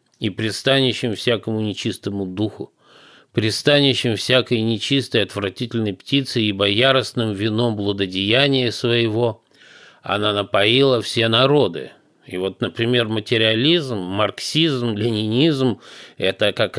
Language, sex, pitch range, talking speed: Russian, male, 105-130 Hz, 100 wpm